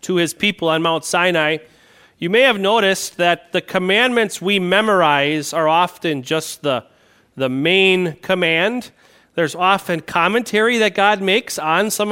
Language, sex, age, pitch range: English, male, 40-59, 165-210 Hz